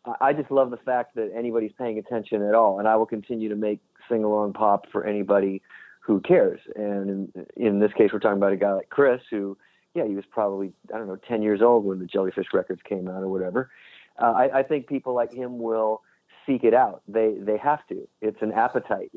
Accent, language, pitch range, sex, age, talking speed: American, English, 100-120 Hz, male, 40-59, 225 wpm